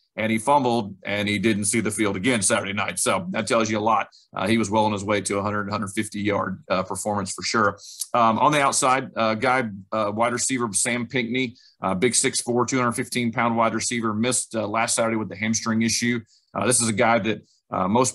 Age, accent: 40-59, American